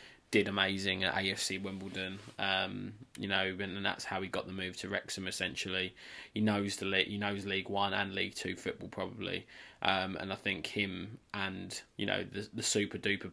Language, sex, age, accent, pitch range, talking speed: English, male, 20-39, British, 95-105 Hz, 195 wpm